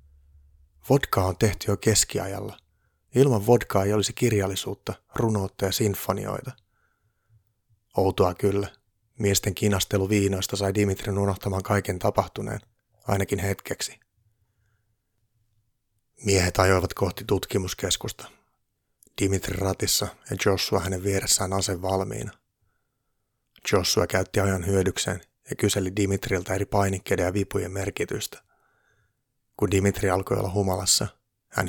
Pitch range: 95-110 Hz